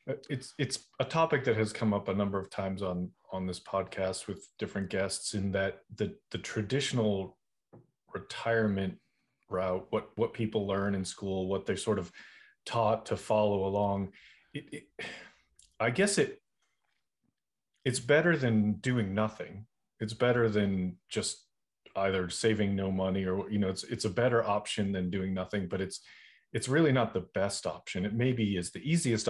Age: 30-49